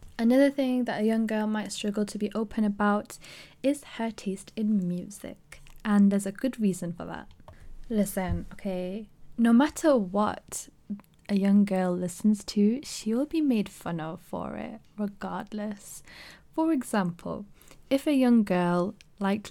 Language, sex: English, female